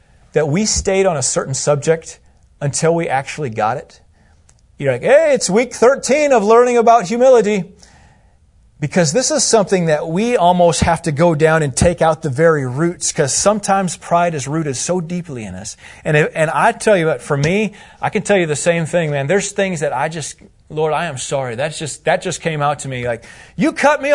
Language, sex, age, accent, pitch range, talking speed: English, male, 30-49, American, 135-195 Hz, 215 wpm